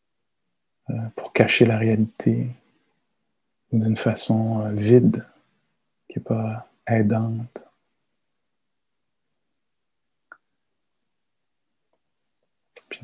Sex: male